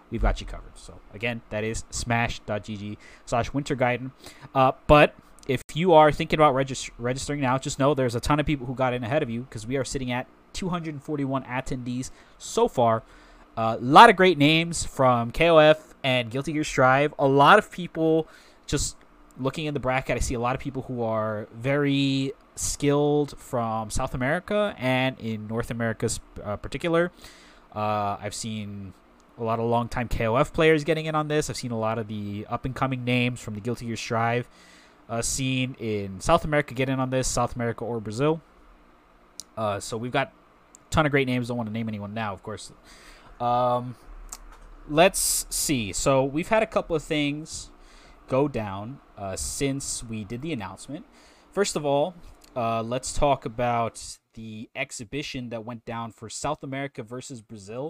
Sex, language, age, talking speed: male, English, 20-39, 180 wpm